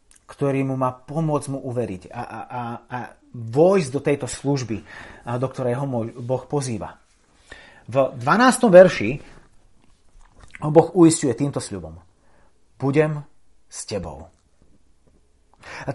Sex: male